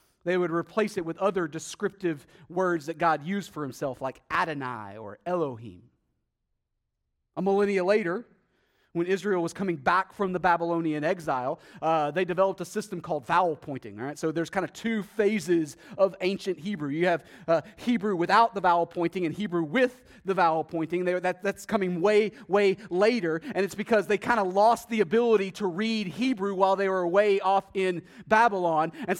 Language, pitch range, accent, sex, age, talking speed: English, 145-195 Hz, American, male, 30-49, 180 wpm